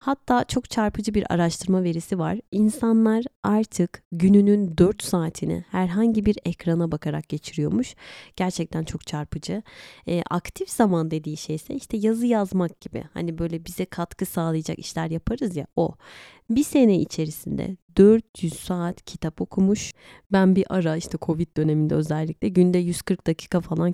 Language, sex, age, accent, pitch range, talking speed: Turkish, female, 30-49, native, 160-205 Hz, 145 wpm